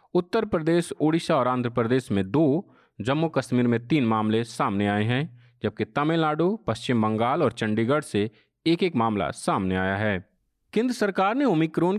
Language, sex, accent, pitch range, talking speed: Hindi, male, native, 115-165 Hz, 165 wpm